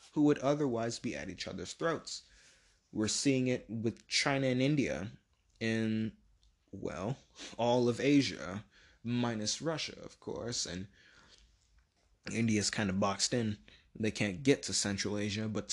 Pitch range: 100-120 Hz